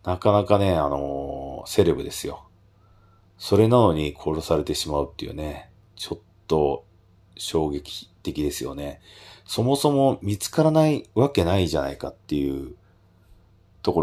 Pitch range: 80-100 Hz